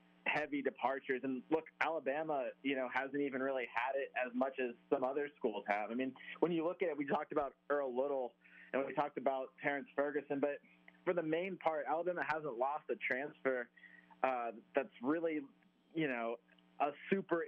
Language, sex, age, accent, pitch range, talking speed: English, male, 30-49, American, 120-145 Hz, 185 wpm